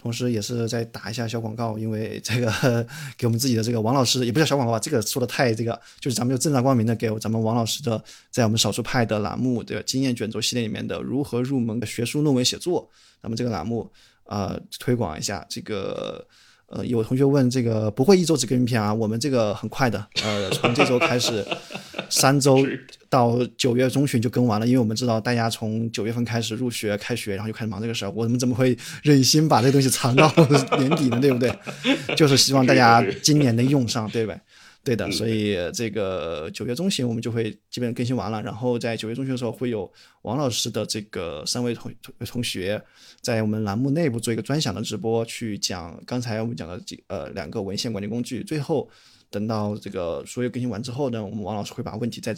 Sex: male